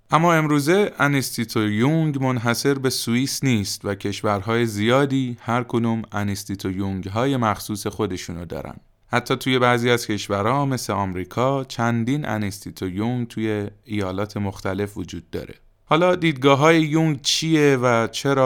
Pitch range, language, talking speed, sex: 100-135 Hz, Persian, 135 wpm, male